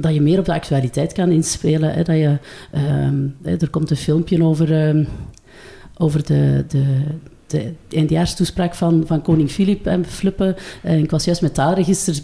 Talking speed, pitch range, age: 165 wpm, 155-185 Hz, 40-59